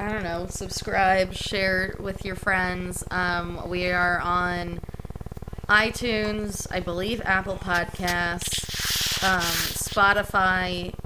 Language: English